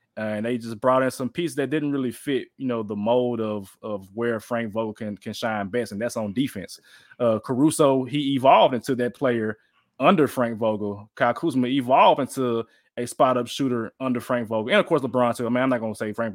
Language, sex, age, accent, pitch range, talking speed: English, male, 20-39, American, 120-140 Hz, 230 wpm